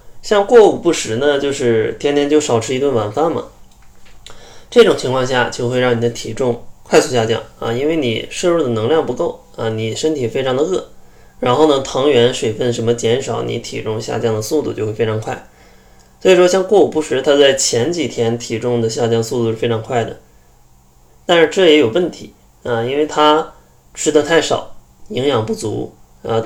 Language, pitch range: Chinese, 115-145 Hz